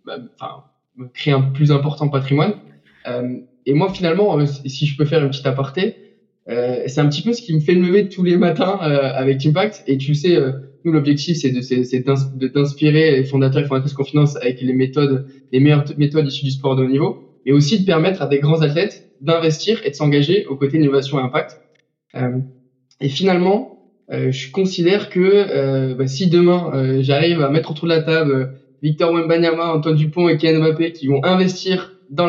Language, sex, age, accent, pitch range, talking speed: French, male, 20-39, French, 135-165 Hz, 205 wpm